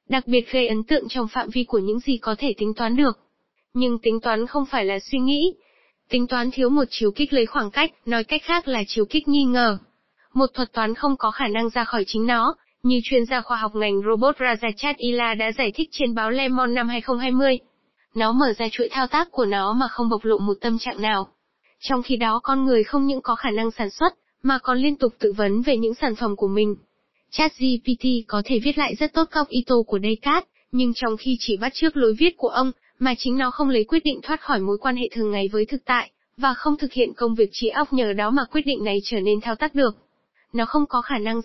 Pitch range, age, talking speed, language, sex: 225-270 Hz, 10-29, 250 wpm, Vietnamese, female